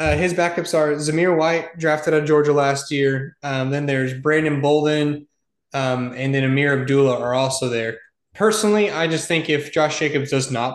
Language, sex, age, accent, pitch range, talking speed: English, male, 20-39, American, 135-160 Hz, 190 wpm